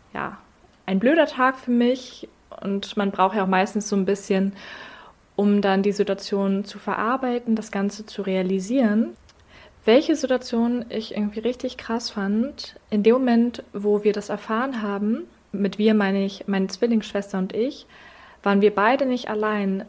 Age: 20-39